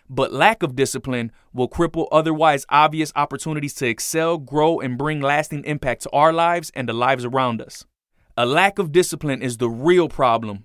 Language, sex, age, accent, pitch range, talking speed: English, male, 20-39, American, 130-170 Hz, 180 wpm